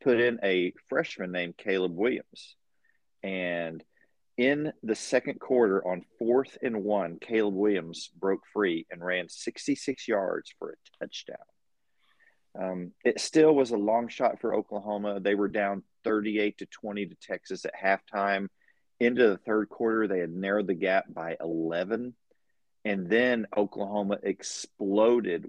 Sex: male